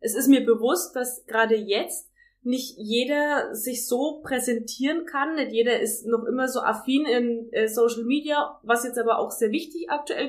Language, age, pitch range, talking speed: German, 20-39, 225-275 Hz, 175 wpm